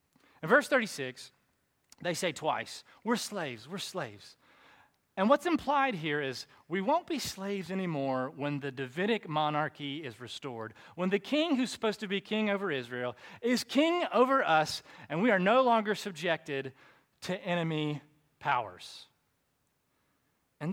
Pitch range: 145-230 Hz